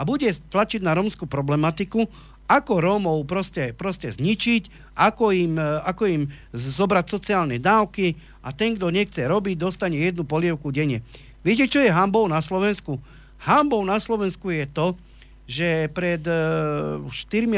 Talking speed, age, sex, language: 140 wpm, 40-59, male, Slovak